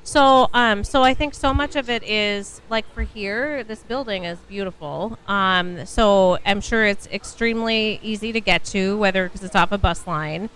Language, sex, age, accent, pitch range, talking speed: English, female, 30-49, American, 180-220 Hz, 195 wpm